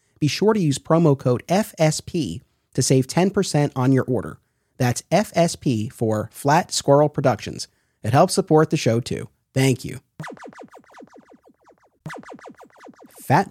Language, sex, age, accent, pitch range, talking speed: English, male, 30-49, American, 120-165 Hz, 125 wpm